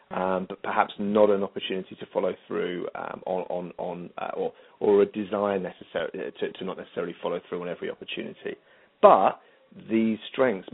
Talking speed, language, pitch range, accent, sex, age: 175 wpm, English, 95-110 Hz, British, male, 40-59